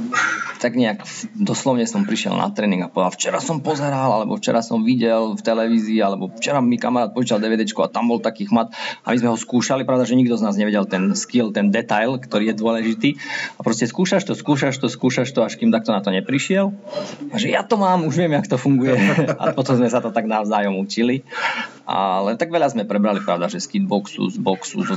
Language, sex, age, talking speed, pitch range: Slovak, male, 20-39, 220 wpm, 105-145 Hz